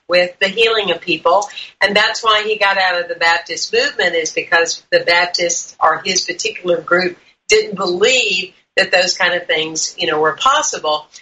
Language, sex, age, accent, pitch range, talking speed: English, female, 50-69, American, 180-255 Hz, 180 wpm